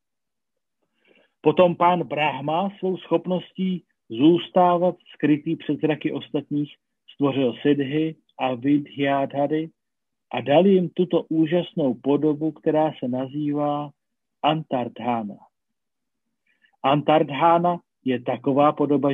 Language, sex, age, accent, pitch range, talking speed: Czech, male, 40-59, native, 140-165 Hz, 90 wpm